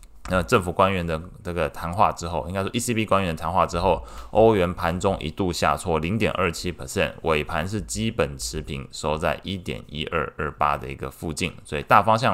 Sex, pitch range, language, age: male, 75-95 Hz, Chinese, 20-39